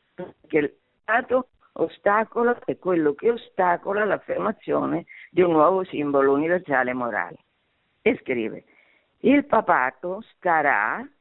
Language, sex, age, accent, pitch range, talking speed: Italian, female, 50-69, native, 170-245 Hz, 100 wpm